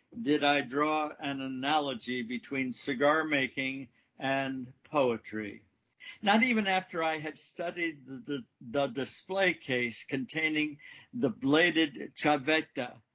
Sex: male